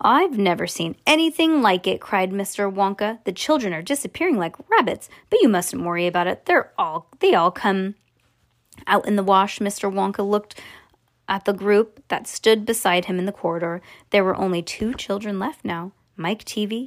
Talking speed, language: 185 wpm, English